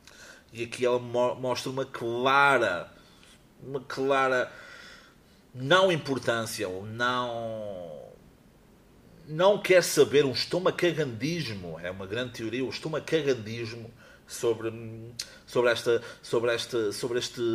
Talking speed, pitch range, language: 105 wpm, 115-155 Hz, Portuguese